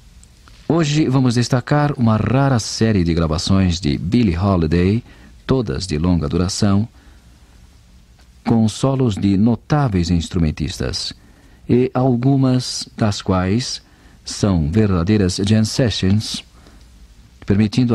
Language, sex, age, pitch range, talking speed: Portuguese, male, 50-69, 80-120 Hz, 95 wpm